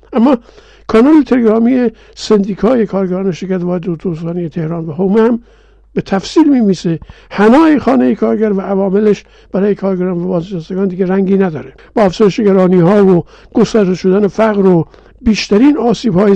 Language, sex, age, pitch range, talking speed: Persian, male, 60-79, 175-220 Hz, 145 wpm